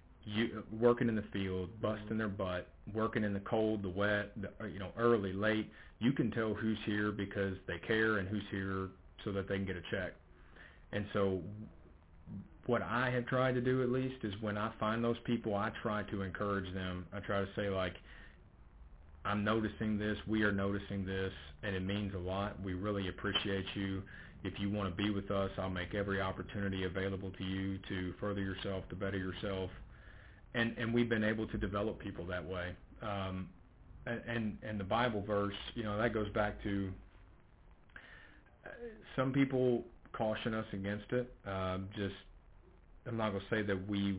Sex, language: male, English